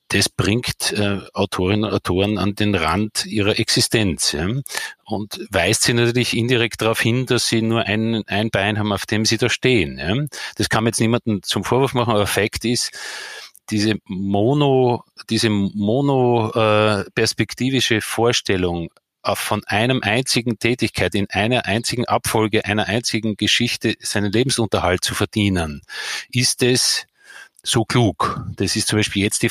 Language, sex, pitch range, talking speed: German, male, 105-120 Hz, 150 wpm